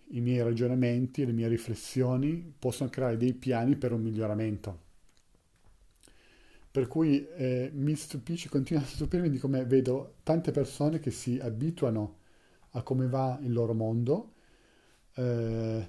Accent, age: native, 40-59